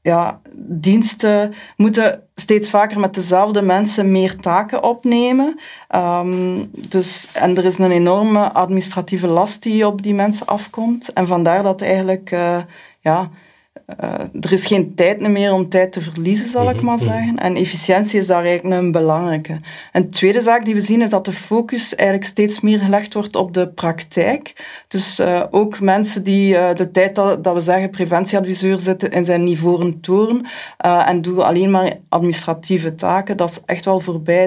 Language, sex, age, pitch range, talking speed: Dutch, female, 20-39, 175-205 Hz, 175 wpm